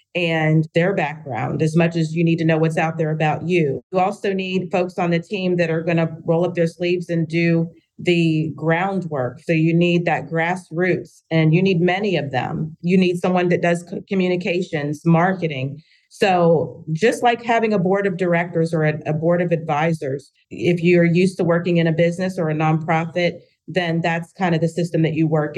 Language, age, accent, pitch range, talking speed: English, 40-59, American, 160-175 Hz, 195 wpm